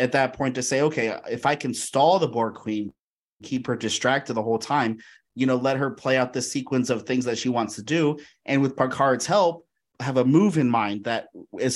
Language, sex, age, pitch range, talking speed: English, male, 30-49, 110-130 Hz, 230 wpm